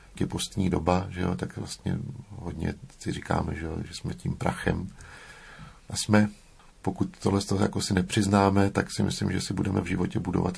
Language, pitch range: Slovak, 90-105 Hz